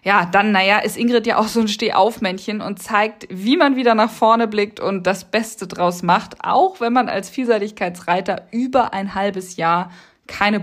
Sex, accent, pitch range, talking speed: female, German, 195-255 Hz, 185 wpm